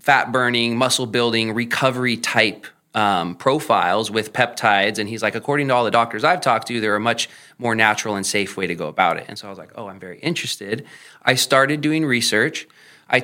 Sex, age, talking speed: male, 20-39, 200 wpm